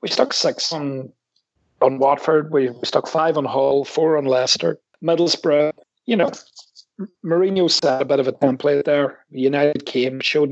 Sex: male